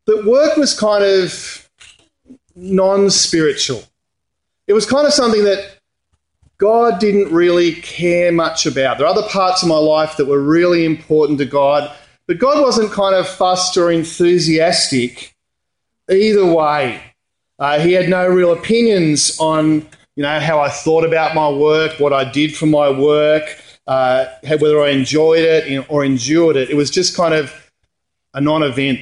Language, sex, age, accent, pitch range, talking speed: English, male, 40-59, Australian, 140-190 Hz, 160 wpm